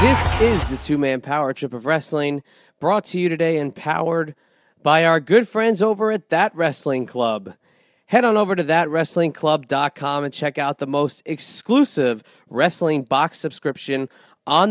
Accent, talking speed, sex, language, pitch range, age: American, 155 wpm, male, English, 125-165 Hz, 30-49